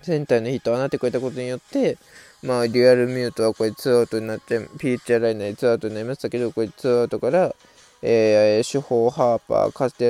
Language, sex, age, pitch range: Japanese, male, 20-39, 115-155 Hz